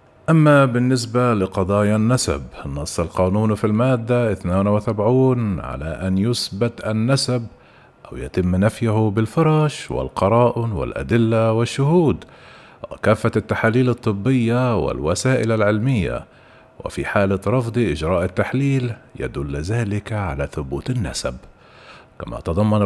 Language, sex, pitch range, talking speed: Arabic, male, 95-125 Hz, 95 wpm